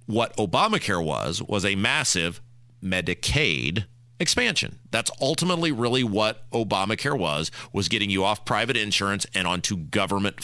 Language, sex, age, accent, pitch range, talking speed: English, male, 40-59, American, 100-135 Hz, 130 wpm